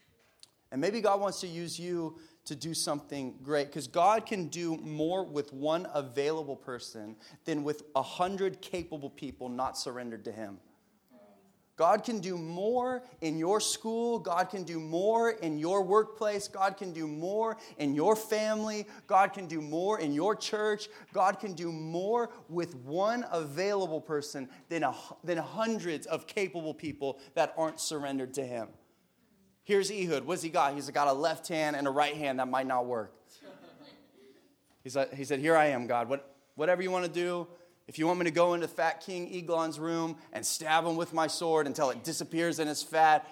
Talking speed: 185 wpm